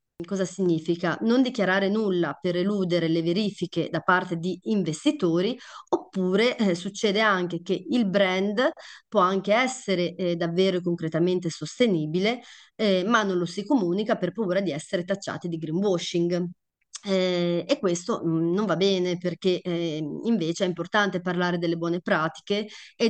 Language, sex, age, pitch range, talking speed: Italian, female, 30-49, 175-200 Hz, 145 wpm